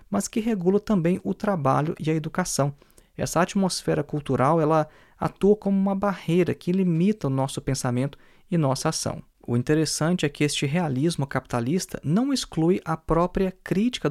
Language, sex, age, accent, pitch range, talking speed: Portuguese, male, 20-39, Brazilian, 135-185 Hz, 155 wpm